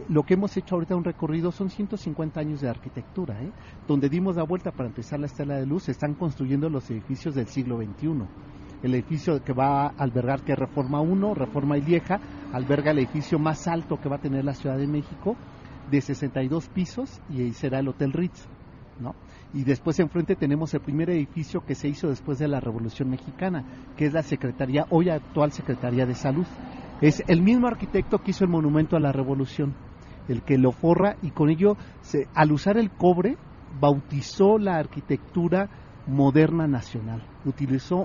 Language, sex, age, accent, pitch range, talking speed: Spanish, male, 40-59, Mexican, 135-175 Hz, 190 wpm